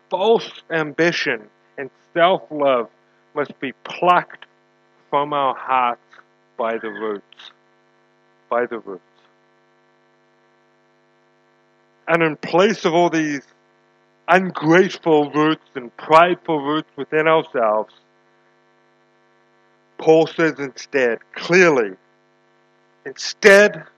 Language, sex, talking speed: English, male, 85 wpm